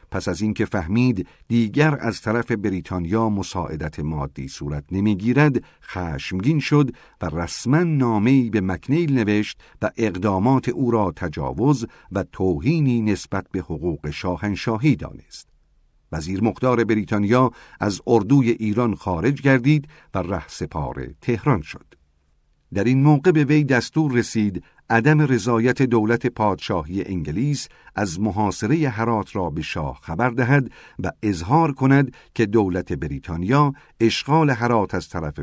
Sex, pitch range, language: male, 90-130 Hz, Persian